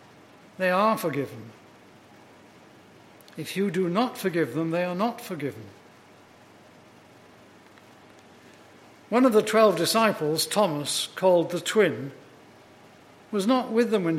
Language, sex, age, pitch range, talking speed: English, male, 60-79, 155-215 Hz, 115 wpm